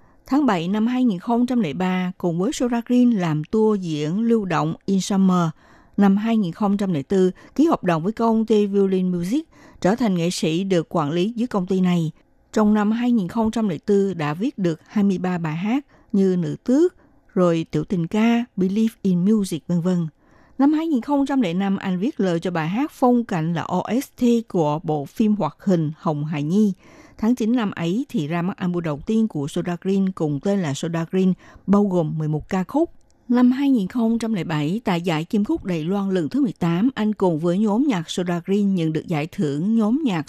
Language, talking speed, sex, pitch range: Vietnamese, 185 wpm, female, 170-230 Hz